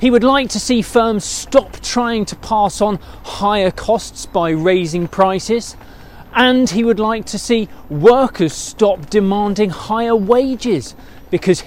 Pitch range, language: 165-230 Hz, English